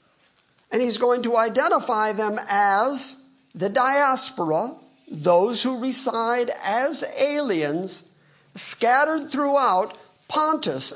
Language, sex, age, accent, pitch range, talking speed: English, male, 50-69, American, 200-255 Hz, 95 wpm